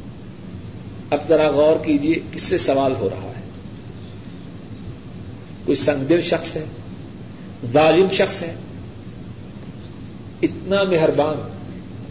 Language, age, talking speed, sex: Urdu, 50-69, 95 wpm, male